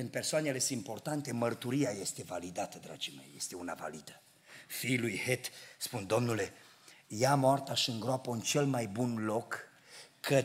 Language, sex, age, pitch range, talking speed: Romanian, male, 50-69, 115-170 Hz, 155 wpm